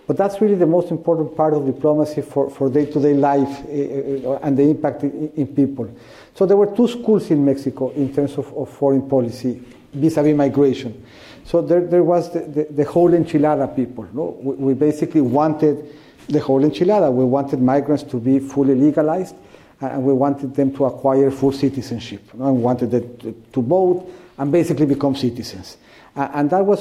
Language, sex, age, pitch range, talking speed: English, male, 50-69, 135-160 Hz, 190 wpm